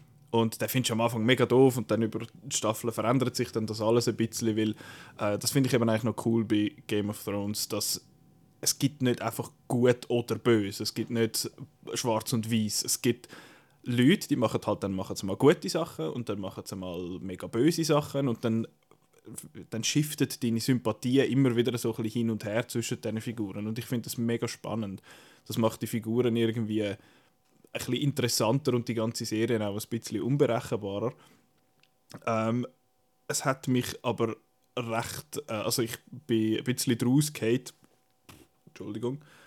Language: German